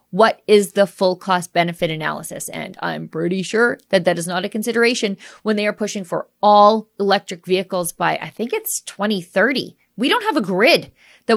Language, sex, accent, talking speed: English, female, American, 190 wpm